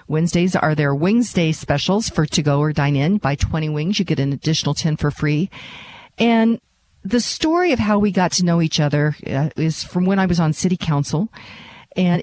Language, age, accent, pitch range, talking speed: English, 50-69, American, 150-190 Hz, 205 wpm